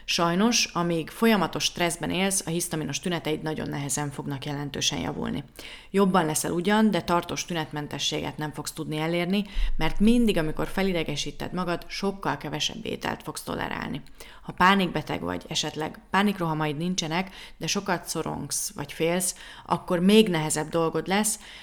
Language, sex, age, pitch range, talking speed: Hungarian, female, 30-49, 155-185 Hz, 135 wpm